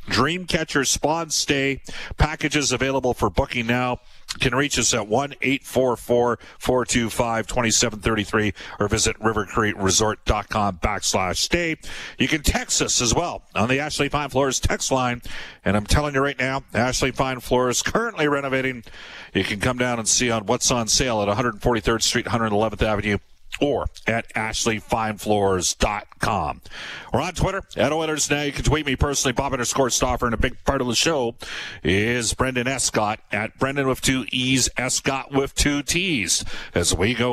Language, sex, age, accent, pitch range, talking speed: English, male, 40-59, American, 115-135 Hz, 155 wpm